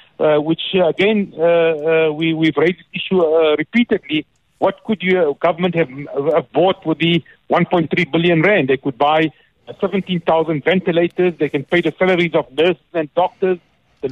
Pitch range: 155-185 Hz